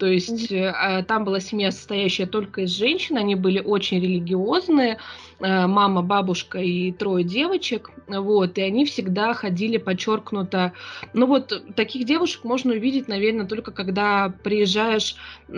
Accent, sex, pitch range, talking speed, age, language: native, female, 190-240 Hz, 130 wpm, 20-39, Russian